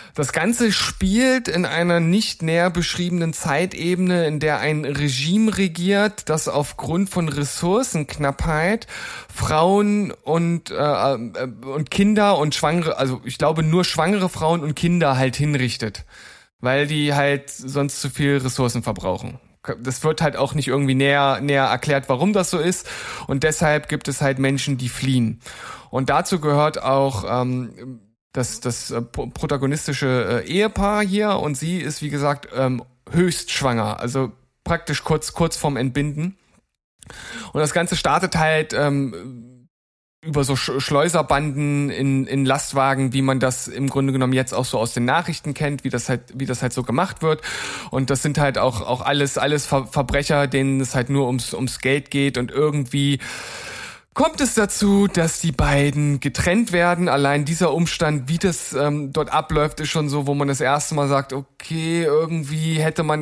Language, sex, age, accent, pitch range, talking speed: German, male, 10-29, German, 135-165 Hz, 165 wpm